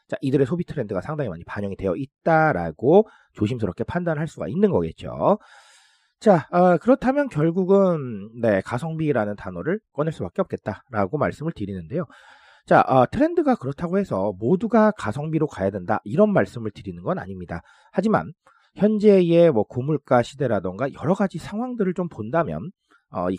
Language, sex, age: Korean, male, 40-59